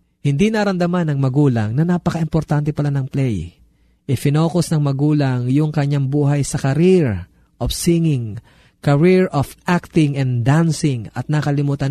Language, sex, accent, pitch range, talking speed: Filipino, male, native, 130-160 Hz, 130 wpm